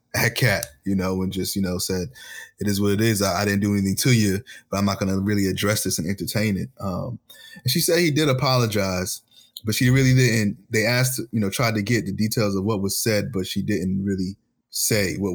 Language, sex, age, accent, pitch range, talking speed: English, male, 20-39, American, 95-110 Hz, 240 wpm